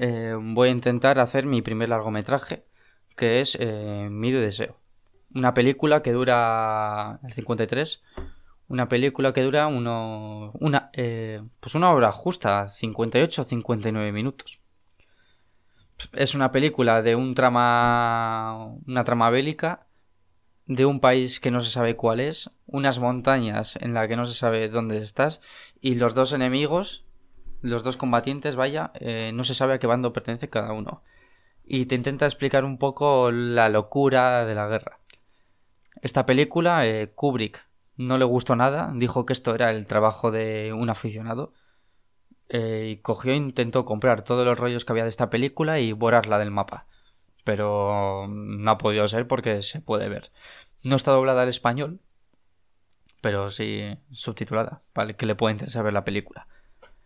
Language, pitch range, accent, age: Spanish, 110-130 Hz, Spanish, 20-39